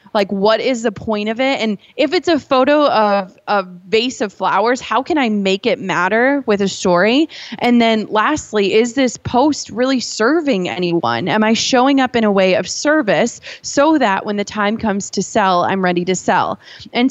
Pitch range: 195-250 Hz